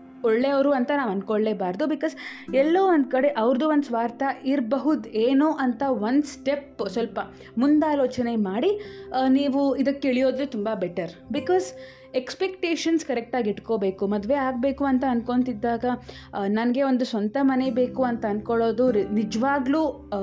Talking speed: 120 wpm